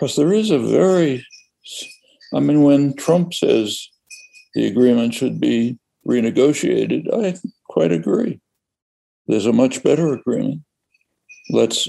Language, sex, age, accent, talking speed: English, male, 60-79, American, 120 wpm